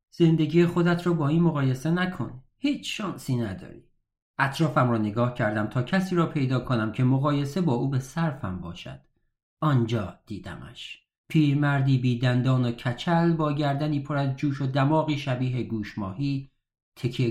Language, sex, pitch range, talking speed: Persian, male, 120-165 Hz, 150 wpm